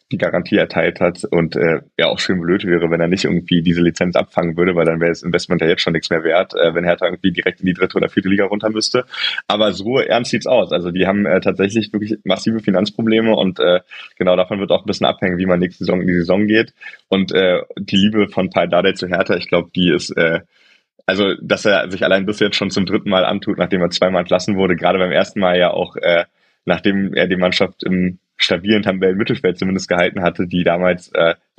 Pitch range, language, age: 90-105 Hz, German, 20-39